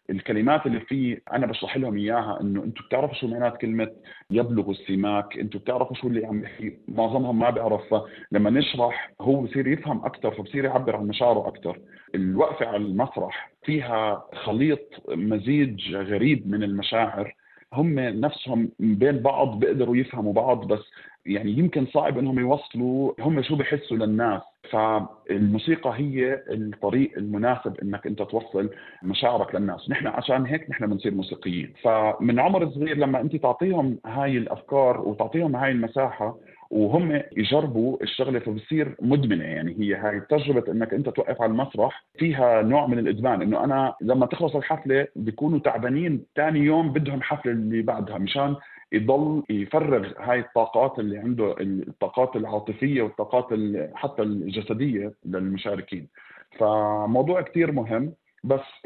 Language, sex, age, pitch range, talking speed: Arabic, male, 40-59, 105-140 Hz, 140 wpm